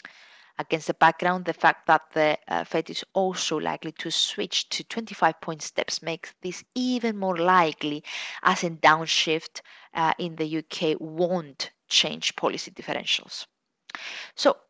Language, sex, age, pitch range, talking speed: English, female, 20-39, 155-190 Hz, 135 wpm